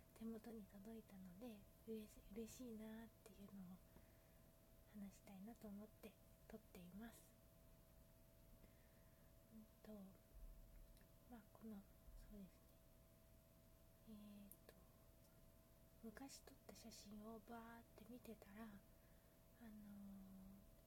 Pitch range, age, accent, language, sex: 205-230 Hz, 20-39, native, Japanese, female